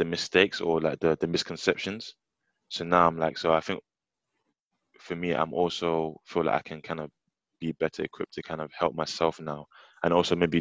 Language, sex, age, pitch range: English, male, 20-39, 75-85 Hz